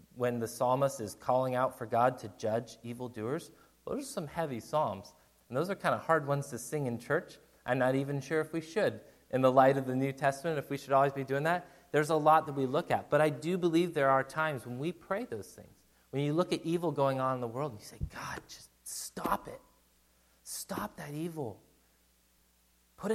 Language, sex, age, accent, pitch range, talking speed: English, male, 30-49, American, 115-150 Hz, 225 wpm